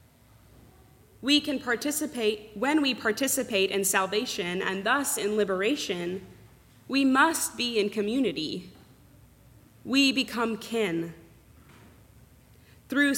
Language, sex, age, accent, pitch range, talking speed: English, female, 20-39, American, 180-245 Hz, 95 wpm